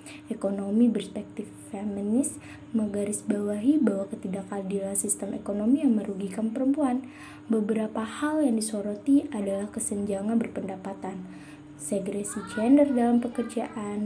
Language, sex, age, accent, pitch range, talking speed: Indonesian, female, 20-39, native, 200-240 Hz, 95 wpm